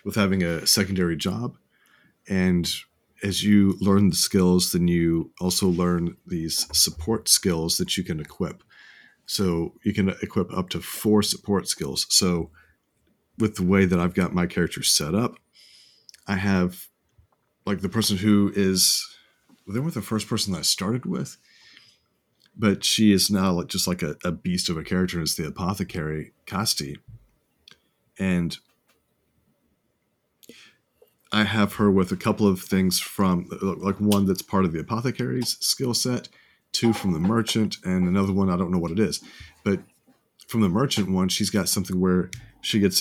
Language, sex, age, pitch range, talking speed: English, male, 40-59, 90-105 Hz, 165 wpm